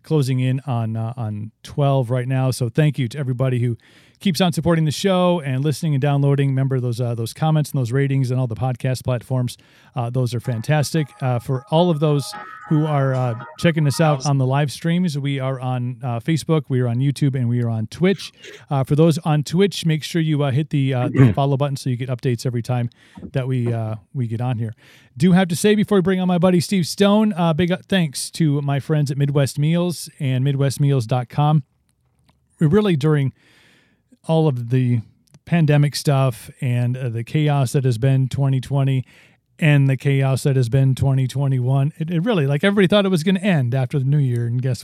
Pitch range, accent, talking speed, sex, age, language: 130-160 Hz, American, 215 wpm, male, 40-59, English